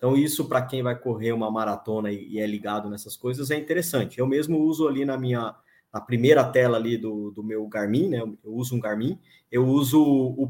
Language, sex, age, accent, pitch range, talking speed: Portuguese, male, 20-39, Brazilian, 125-155 Hz, 210 wpm